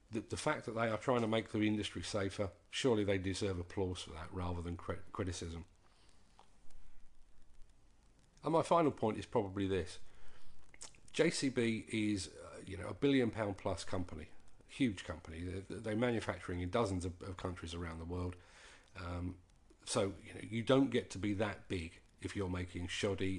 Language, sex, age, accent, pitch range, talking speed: English, male, 40-59, British, 90-110 Hz, 165 wpm